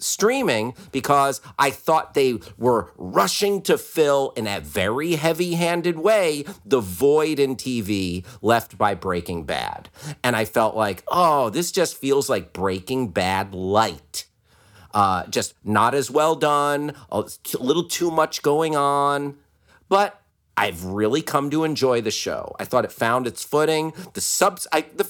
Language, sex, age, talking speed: English, male, 40-59, 155 wpm